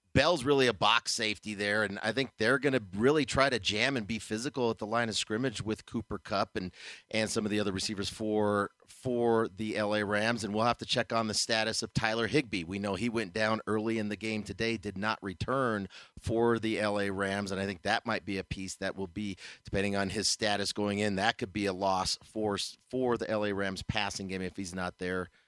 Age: 40-59